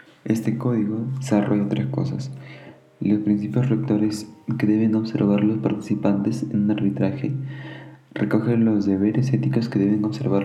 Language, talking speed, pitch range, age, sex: Spanish, 130 wpm, 100-115 Hz, 20-39, male